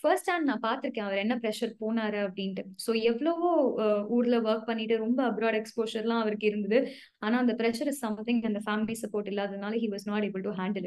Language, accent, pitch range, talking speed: Tamil, native, 210-255 Hz, 200 wpm